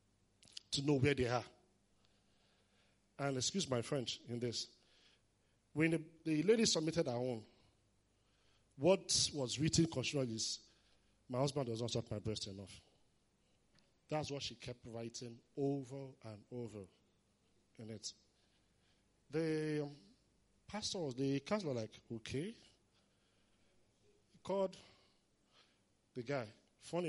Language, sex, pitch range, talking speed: English, male, 105-140 Hz, 115 wpm